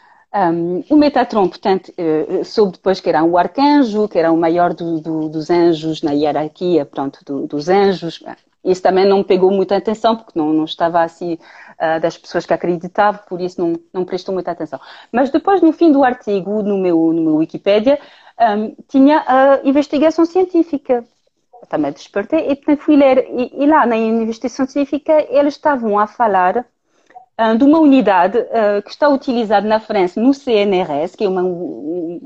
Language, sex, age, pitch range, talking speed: Portuguese, female, 40-59, 185-285 Hz, 175 wpm